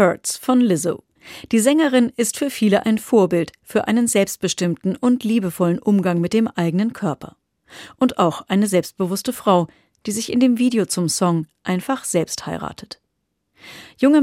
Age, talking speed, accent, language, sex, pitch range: 40-59, 150 wpm, German, German, female, 180-235 Hz